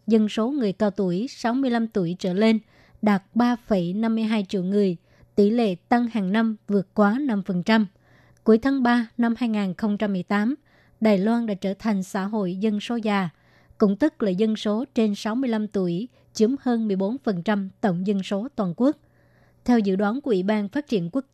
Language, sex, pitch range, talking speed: Vietnamese, male, 200-230 Hz, 195 wpm